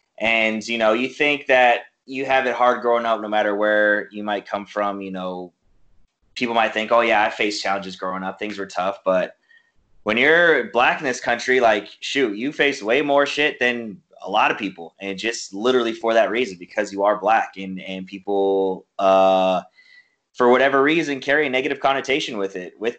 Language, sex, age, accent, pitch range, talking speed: English, male, 20-39, American, 100-115 Hz, 200 wpm